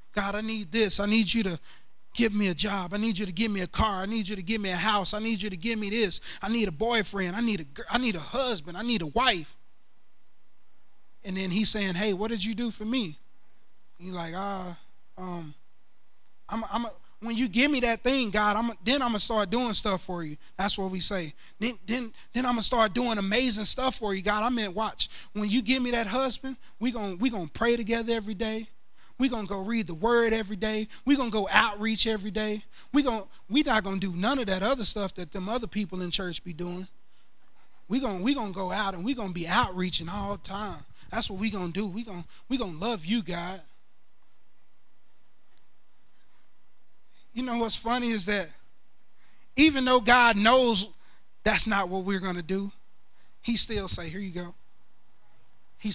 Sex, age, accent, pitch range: male, 20-39, American, 190-230 Hz